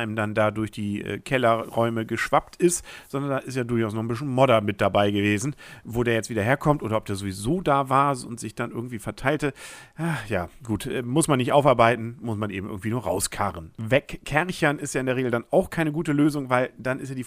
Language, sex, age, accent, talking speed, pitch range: German, male, 50-69, German, 225 wpm, 110-150 Hz